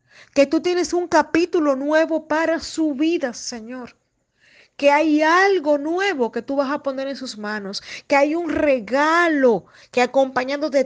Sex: female